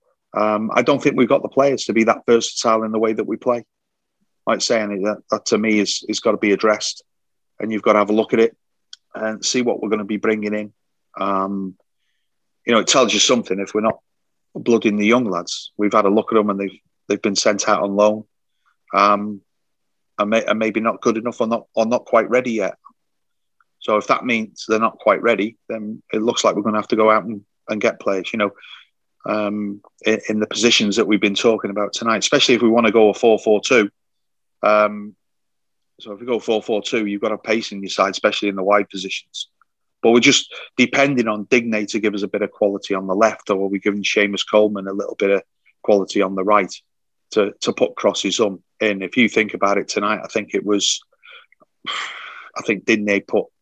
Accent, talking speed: British, 225 wpm